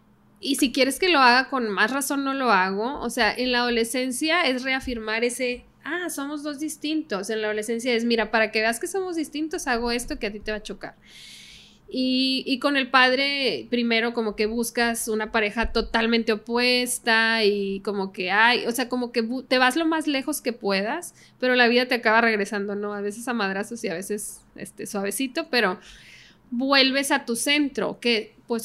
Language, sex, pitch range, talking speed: Spanish, female, 220-260 Hz, 195 wpm